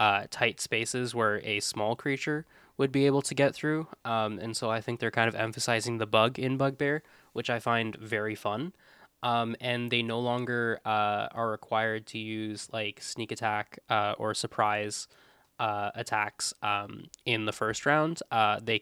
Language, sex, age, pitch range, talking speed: English, male, 10-29, 110-120 Hz, 180 wpm